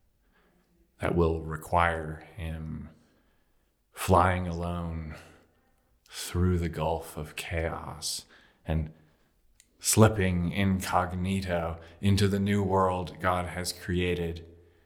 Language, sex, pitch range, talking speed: English, male, 85-135 Hz, 85 wpm